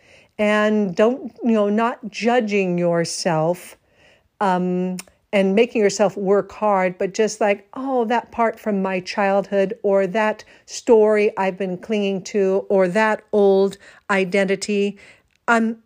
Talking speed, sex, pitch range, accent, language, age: 130 wpm, female, 195-240 Hz, American, English, 50-69